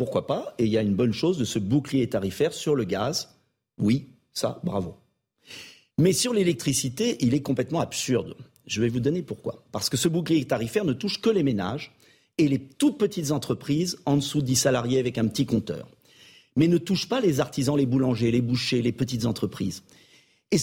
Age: 50-69